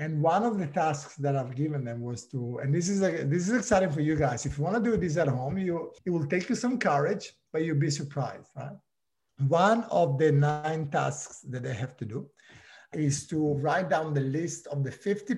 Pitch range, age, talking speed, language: 145-195 Hz, 50-69, 235 wpm, English